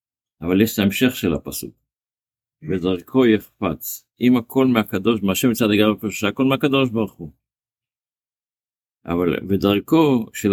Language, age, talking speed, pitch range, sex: Hebrew, 50-69, 115 wpm, 100-120 Hz, male